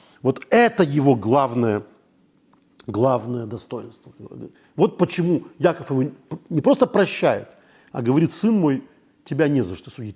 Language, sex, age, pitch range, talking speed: Russian, male, 50-69, 135-215 Hz, 130 wpm